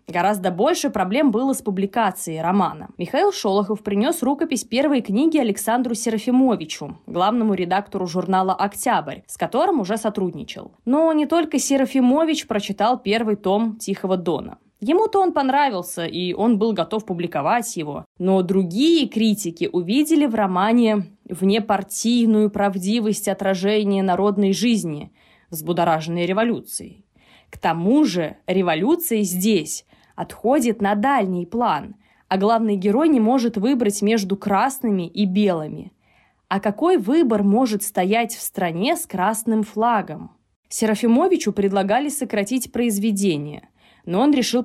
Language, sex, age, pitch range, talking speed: Russian, female, 20-39, 185-240 Hz, 125 wpm